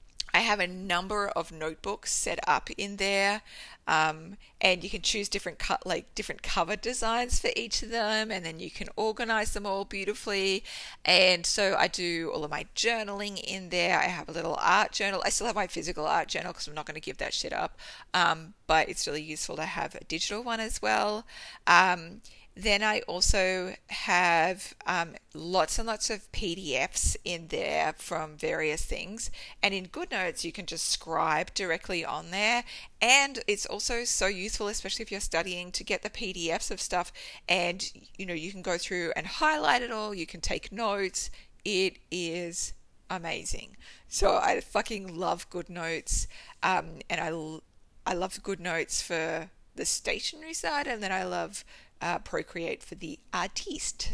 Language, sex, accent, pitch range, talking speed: English, female, Australian, 175-220 Hz, 180 wpm